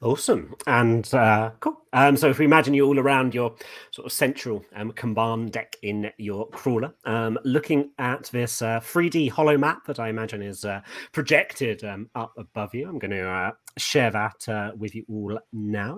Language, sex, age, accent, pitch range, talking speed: English, male, 30-49, British, 105-135 Hz, 195 wpm